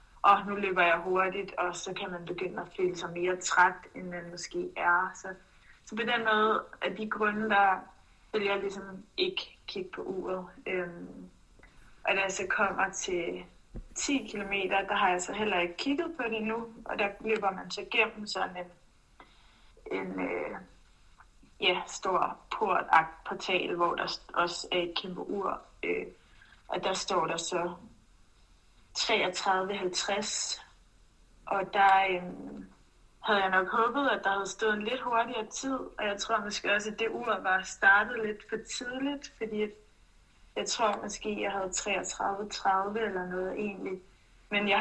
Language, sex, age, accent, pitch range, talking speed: Danish, female, 20-39, native, 180-215 Hz, 160 wpm